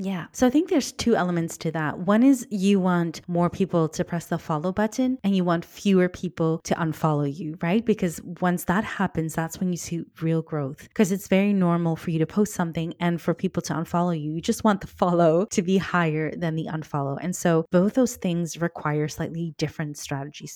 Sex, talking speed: female, 215 wpm